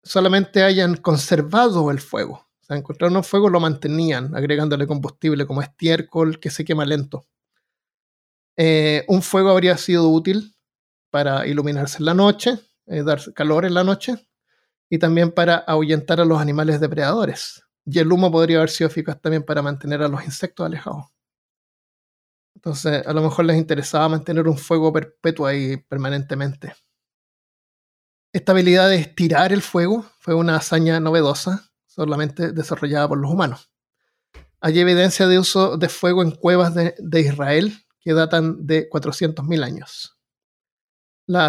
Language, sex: Spanish, male